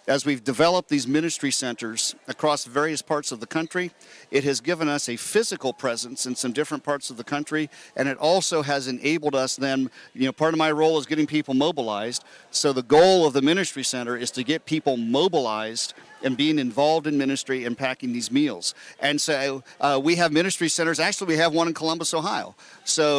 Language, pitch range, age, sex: English, 135-160 Hz, 50-69, male